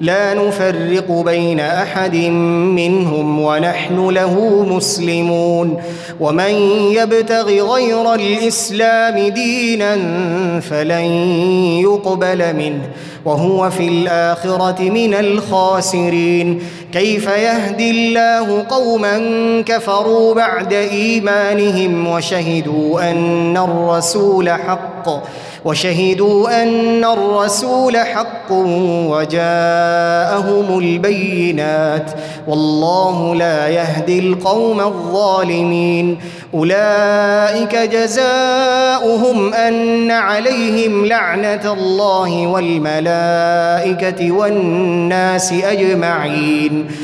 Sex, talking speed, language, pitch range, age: male, 65 wpm, Arabic, 170-205 Hz, 20-39